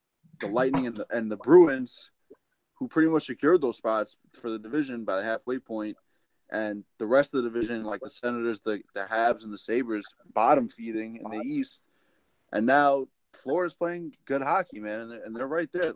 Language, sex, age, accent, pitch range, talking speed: English, male, 20-39, American, 110-135 Hz, 200 wpm